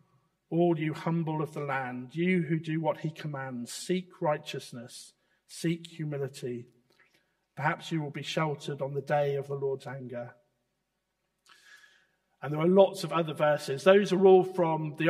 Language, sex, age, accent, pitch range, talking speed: English, male, 50-69, British, 145-185 Hz, 160 wpm